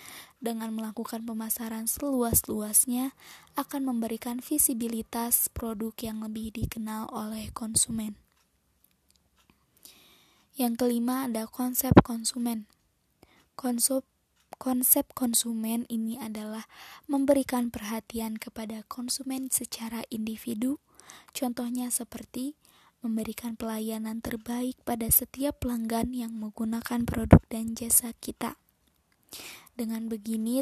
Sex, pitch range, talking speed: female, 225-250 Hz, 90 wpm